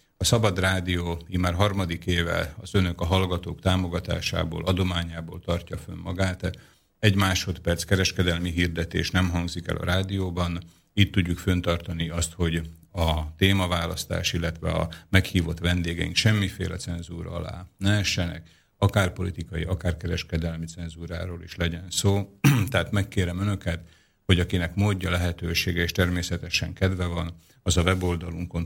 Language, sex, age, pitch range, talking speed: Slovak, male, 50-69, 85-95 Hz, 130 wpm